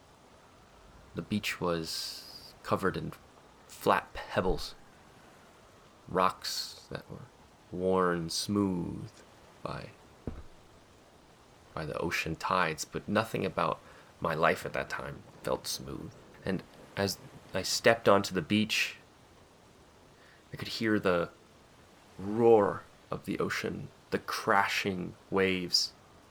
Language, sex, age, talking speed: English, male, 30-49, 105 wpm